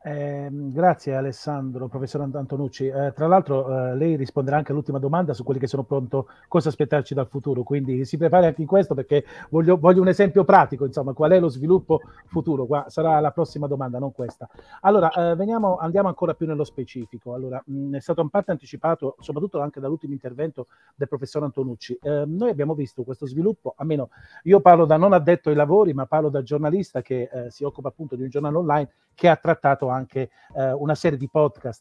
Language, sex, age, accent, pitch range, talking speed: Italian, male, 40-59, native, 130-165 Hz, 200 wpm